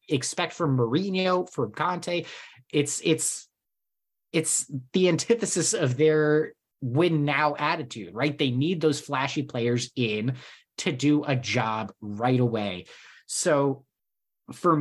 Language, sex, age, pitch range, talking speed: English, male, 30-49, 120-155 Hz, 120 wpm